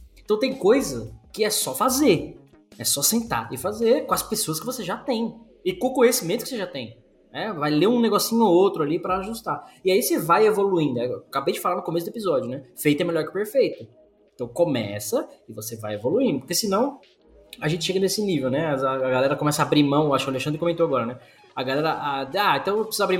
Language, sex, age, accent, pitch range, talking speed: Portuguese, male, 20-39, Brazilian, 145-215 Hz, 235 wpm